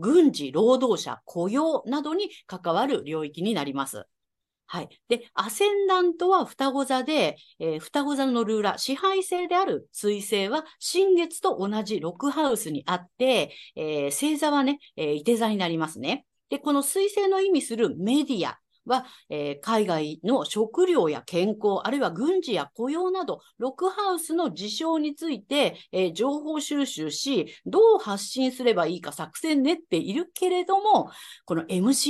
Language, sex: Japanese, female